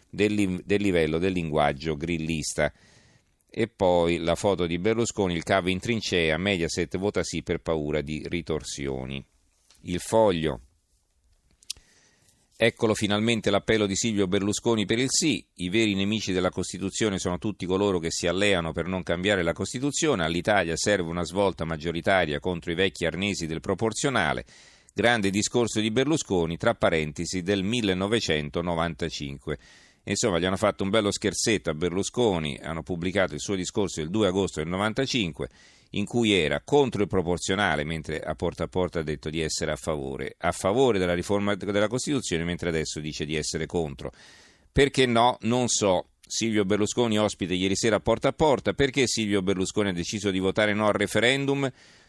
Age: 40-59